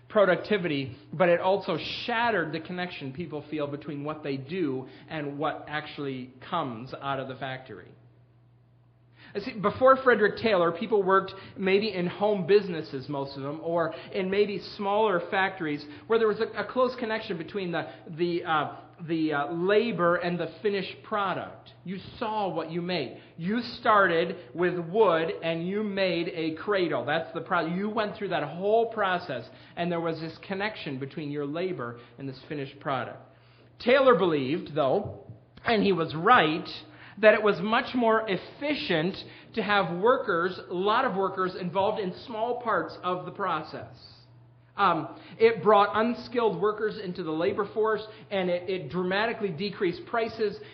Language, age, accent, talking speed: English, 40-59, American, 160 wpm